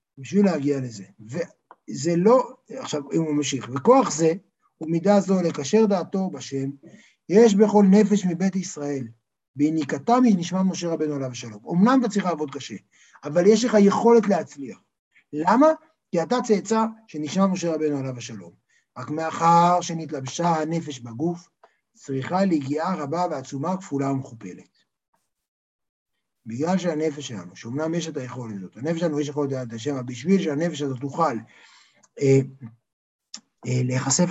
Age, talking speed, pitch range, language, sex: 60-79, 140 wpm, 140-200 Hz, Hebrew, male